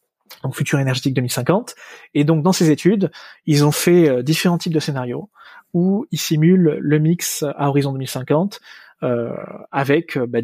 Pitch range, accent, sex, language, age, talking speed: 135-160 Hz, French, male, French, 20-39, 160 wpm